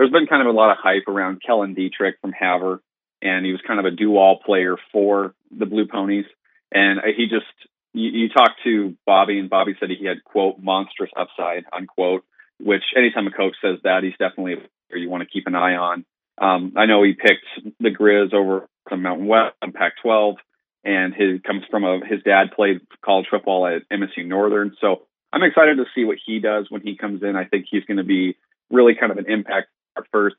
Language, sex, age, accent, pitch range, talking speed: English, male, 30-49, American, 95-105 Hz, 215 wpm